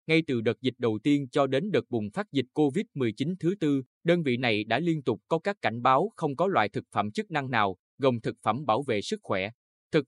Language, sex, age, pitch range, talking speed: Vietnamese, male, 20-39, 115-155 Hz, 245 wpm